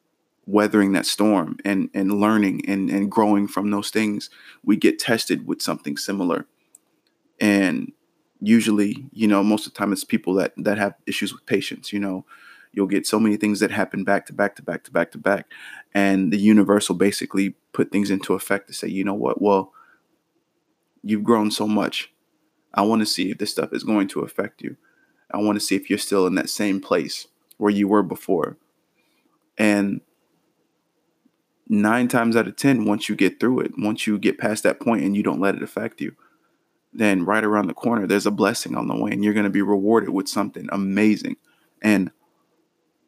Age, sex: 30-49, male